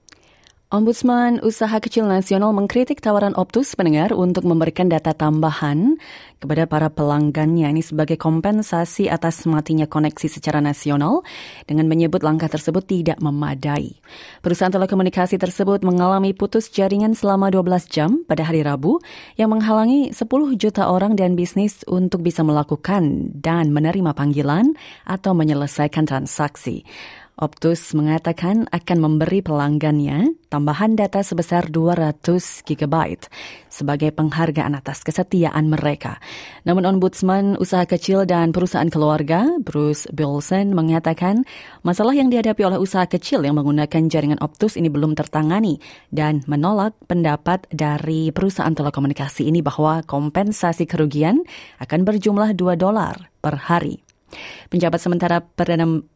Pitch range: 155-195 Hz